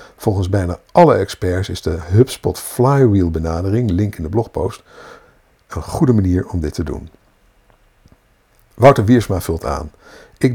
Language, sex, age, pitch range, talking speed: Dutch, male, 60-79, 85-120 Hz, 140 wpm